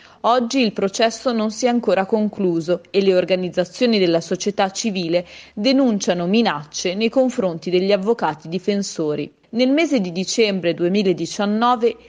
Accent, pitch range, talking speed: native, 185-230 Hz, 130 wpm